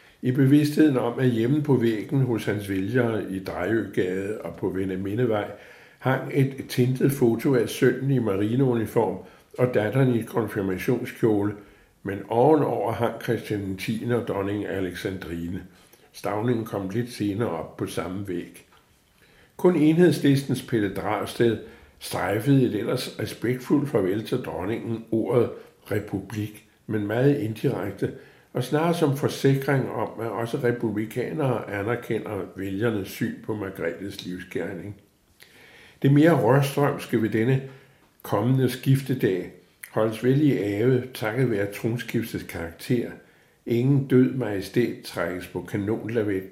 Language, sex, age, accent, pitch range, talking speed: Danish, male, 60-79, American, 100-130 Hz, 120 wpm